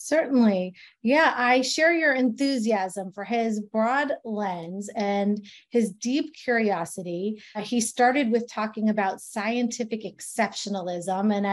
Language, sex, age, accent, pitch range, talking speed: English, female, 30-49, American, 205-245 Hz, 115 wpm